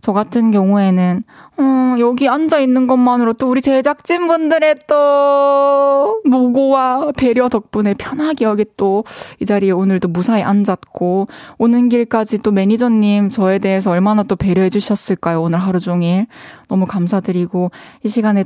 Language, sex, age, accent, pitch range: Korean, female, 20-39, native, 190-245 Hz